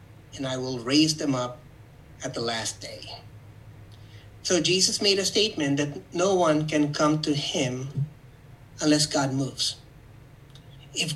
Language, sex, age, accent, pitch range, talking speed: English, male, 30-49, American, 135-205 Hz, 140 wpm